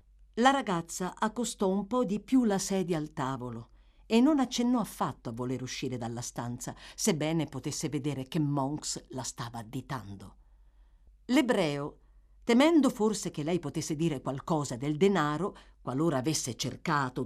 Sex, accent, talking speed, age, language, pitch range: female, native, 145 wpm, 50-69, Italian, 130-220 Hz